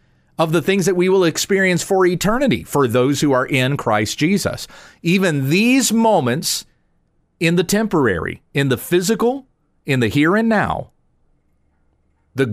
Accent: American